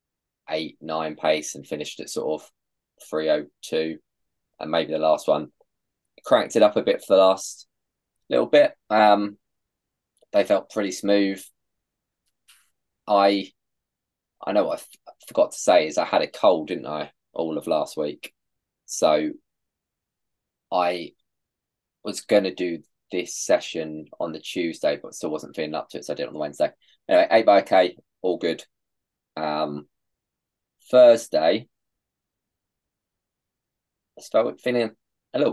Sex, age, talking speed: male, 20-39, 150 wpm